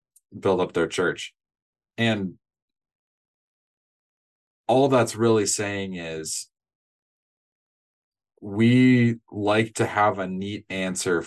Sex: male